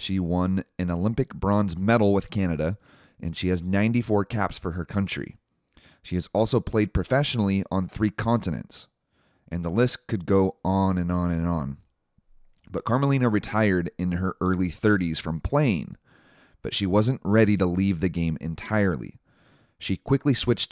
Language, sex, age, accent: English, male, 30-49, American